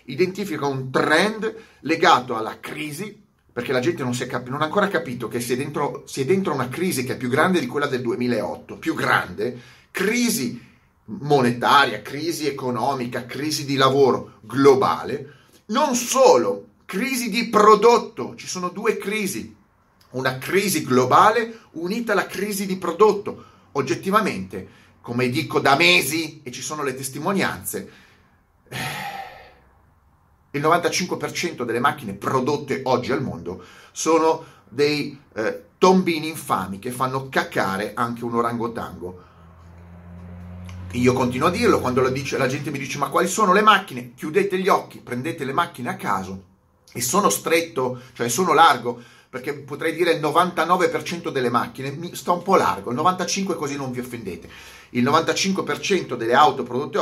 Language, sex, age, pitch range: Italian, male, 30-49, 120-180 Hz